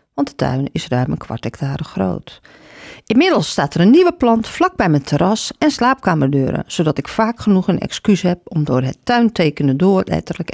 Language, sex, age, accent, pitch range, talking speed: Dutch, female, 40-59, Dutch, 150-210 Hz, 195 wpm